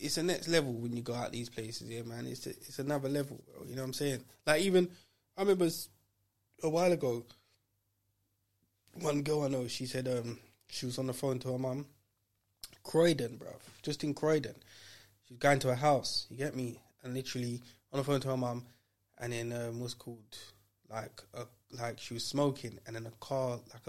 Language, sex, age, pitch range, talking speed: English, male, 20-39, 115-135 Hz, 205 wpm